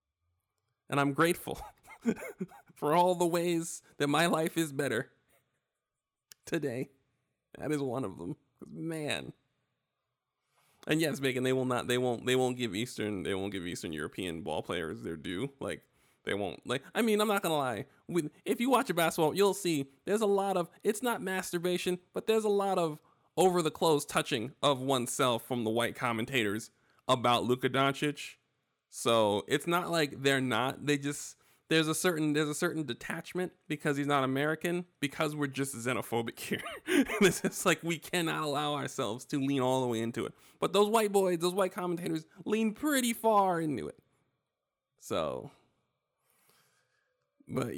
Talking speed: 170 wpm